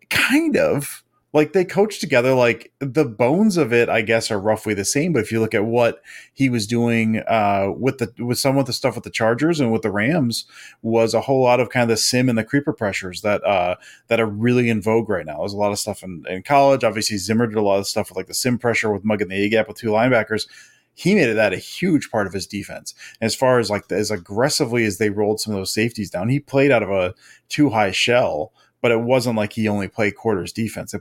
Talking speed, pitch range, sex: 260 wpm, 105-120 Hz, male